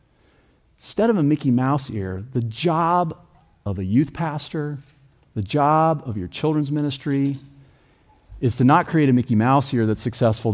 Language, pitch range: English, 110-150 Hz